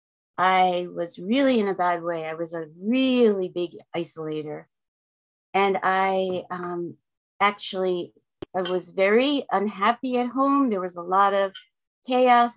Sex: female